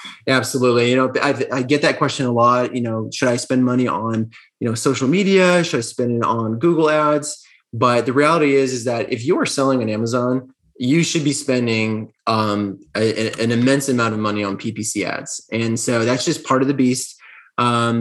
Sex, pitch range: male, 110-130 Hz